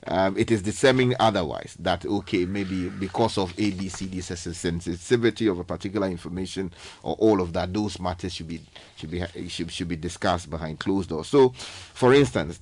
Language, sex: English, male